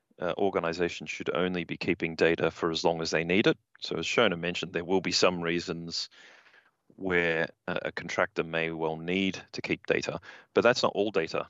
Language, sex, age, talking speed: English, male, 30-49, 200 wpm